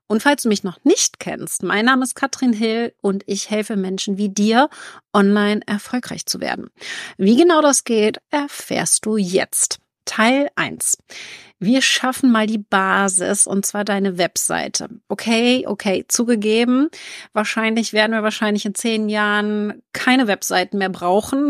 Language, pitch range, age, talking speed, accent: German, 200-245 Hz, 40-59, 150 wpm, German